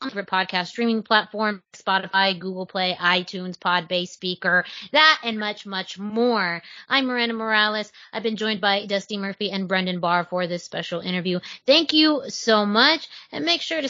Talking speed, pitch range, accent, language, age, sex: 165 wpm, 190-250 Hz, American, English, 30-49, female